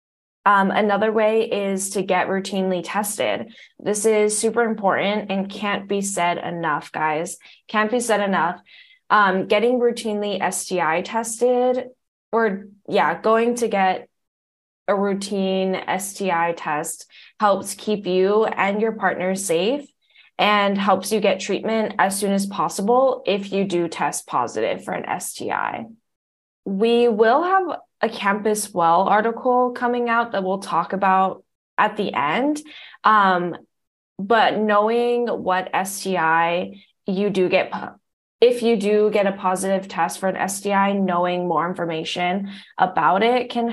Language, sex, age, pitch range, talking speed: English, female, 10-29, 185-225 Hz, 135 wpm